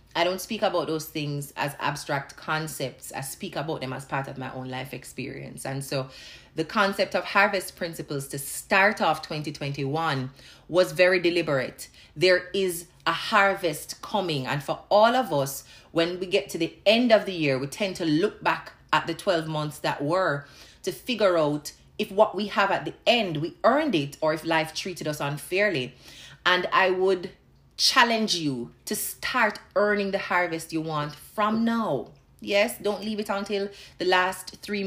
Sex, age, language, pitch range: female, 30-49, English, 150-195 Hz